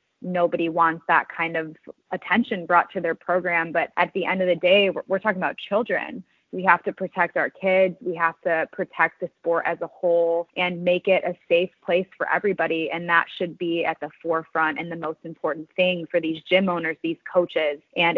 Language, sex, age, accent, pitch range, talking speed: English, female, 20-39, American, 165-185 Hz, 210 wpm